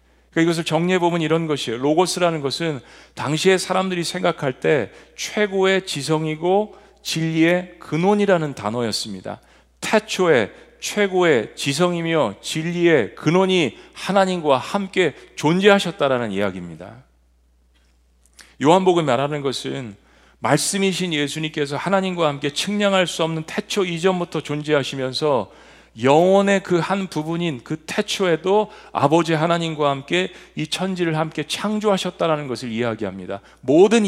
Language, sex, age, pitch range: Korean, male, 40-59, 135-185 Hz